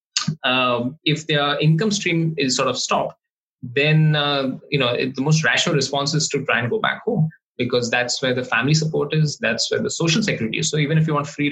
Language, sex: English, male